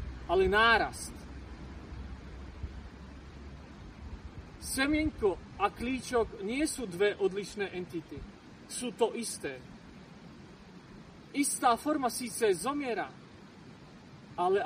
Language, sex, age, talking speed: Slovak, male, 40-59, 75 wpm